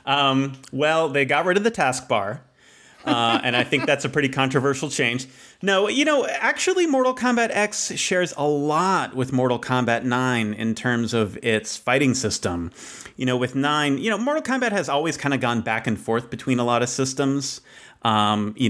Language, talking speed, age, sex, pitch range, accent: English, 195 wpm, 30-49, male, 110-140 Hz, American